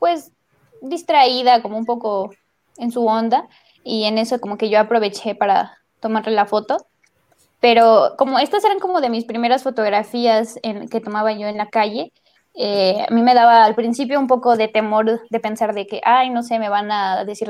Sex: female